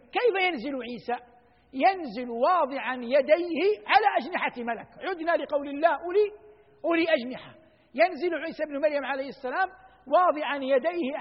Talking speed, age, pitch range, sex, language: 120 wpm, 60-79, 210-285 Hz, male, Arabic